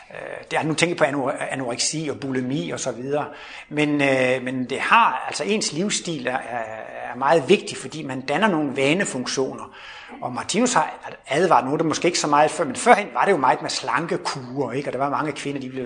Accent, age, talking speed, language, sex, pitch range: native, 60-79, 210 wpm, Danish, male, 145-200 Hz